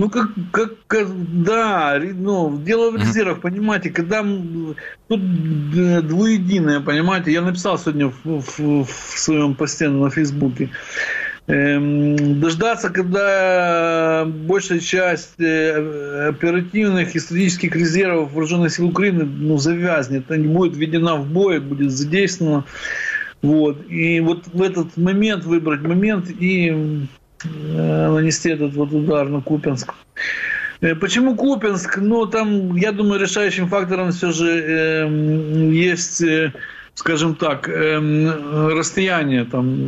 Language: Ukrainian